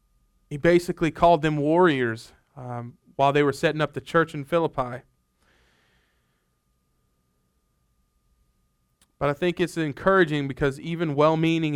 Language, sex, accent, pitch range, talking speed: English, male, American, 115-155 Hz, 115 wpm